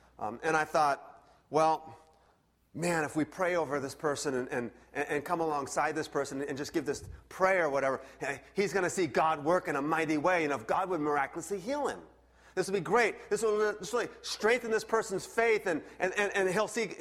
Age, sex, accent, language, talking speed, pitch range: 30-49, male, American, English, 210 wpm, 140-220 Hz